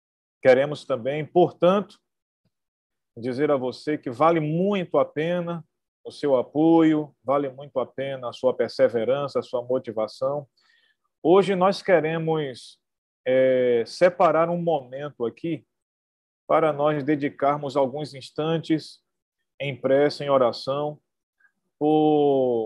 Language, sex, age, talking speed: Portuguese, male, 40-59, 110 wpm